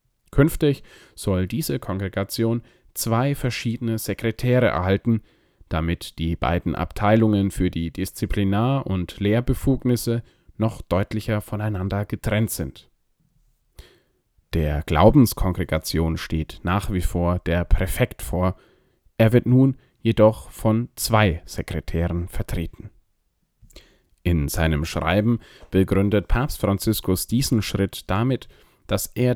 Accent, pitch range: German, 90-115 Hz